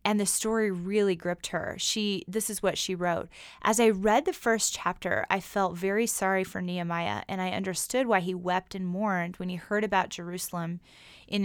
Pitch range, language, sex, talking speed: 180-210 Hz, English, female, 200 wpm